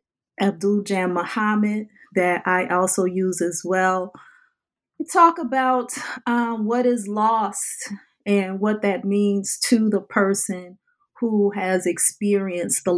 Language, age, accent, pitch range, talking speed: English, 30-49, American, 180-215 Hz, 120 wpm